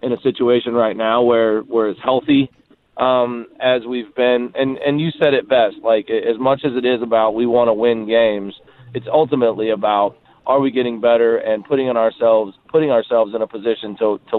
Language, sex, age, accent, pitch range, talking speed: English, male, 30-49, American, 115-135 Hz, 205 wpm